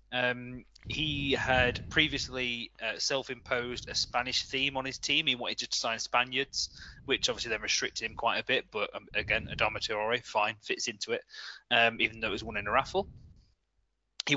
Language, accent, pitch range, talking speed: English, British, 115-140 Hz, 185 wpm